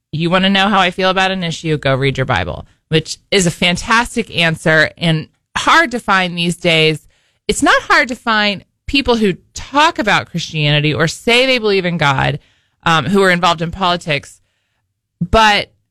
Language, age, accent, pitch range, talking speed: English, 20-39, American, 135-185 Hz, 180 wpm